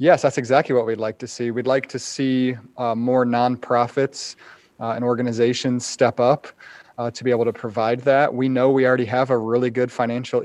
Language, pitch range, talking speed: English, 115-130 Hz, 205 wpm